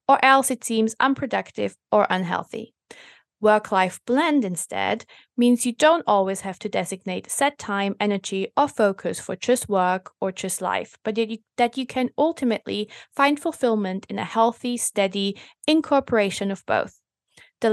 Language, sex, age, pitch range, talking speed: English, female, 20-39, 200-255 Hz, 150 wpm